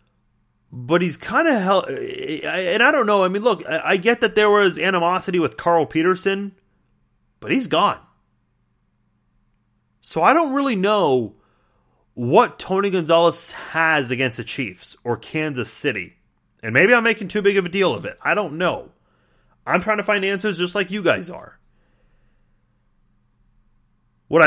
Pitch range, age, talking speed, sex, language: 145-200 Hz, 30-49, 155 wpm, male, English